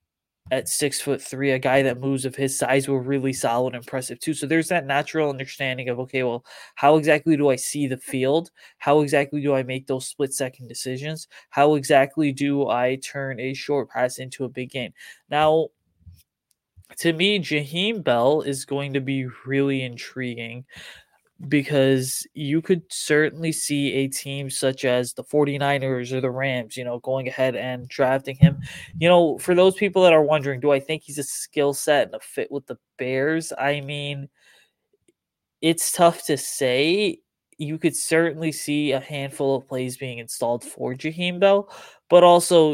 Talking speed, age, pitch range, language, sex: 180 wpm, 20-39, 130-150 Hz, English, male